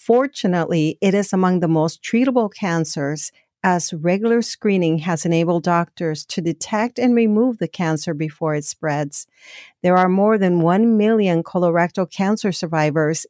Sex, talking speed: female, 145 wpm